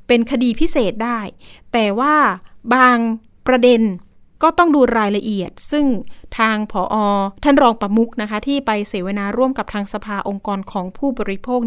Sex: female